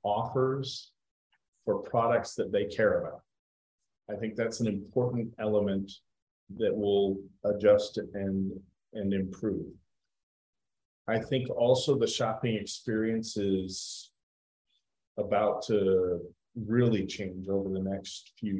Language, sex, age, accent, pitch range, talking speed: English, male, 40-59, American, 100-115 Hz, 110 wpm